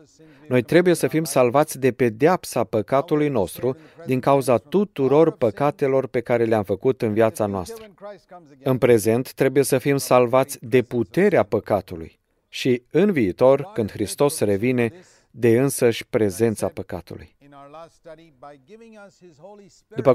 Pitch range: 115-155 Hz